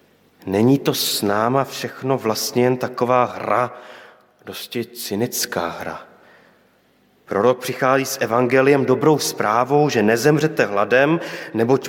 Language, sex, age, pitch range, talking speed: Slovak, male, 30-49, 115-150 Hz, 110 wpm